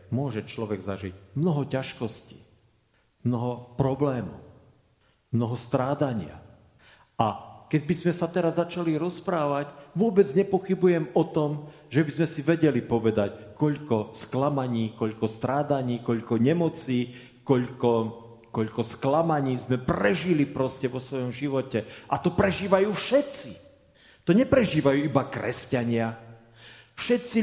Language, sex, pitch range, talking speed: Slovak, male, 125-185 Hz, 110 wpm